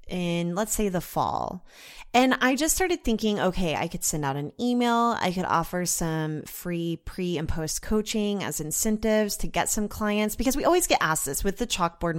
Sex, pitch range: female, 170-225 Hz